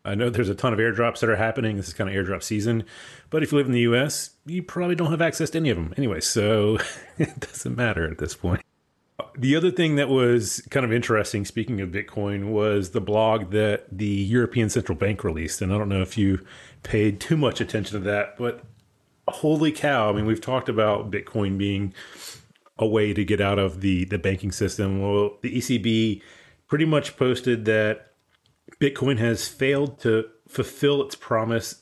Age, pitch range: 30-49, 100-125 Hz